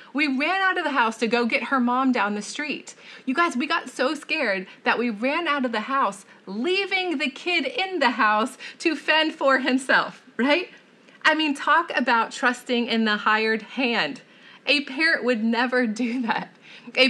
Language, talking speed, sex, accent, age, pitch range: English, 190 wpm, female, American, 30-49, 225-280 Hz